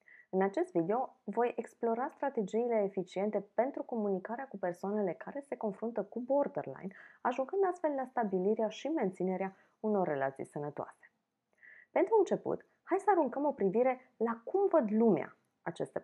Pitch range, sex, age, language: 175-230 Hz, female, 20-39, Romanian